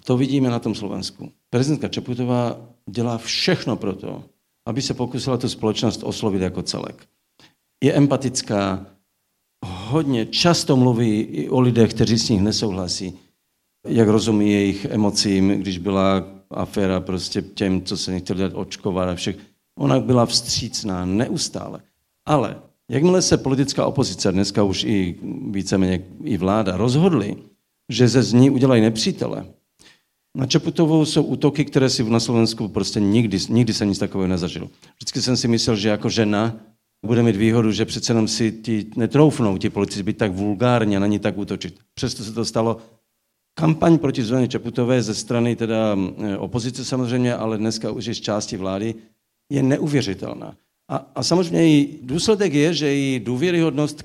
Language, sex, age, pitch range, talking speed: Czech, male, 50-69, 100-130 Hz, 155 wpm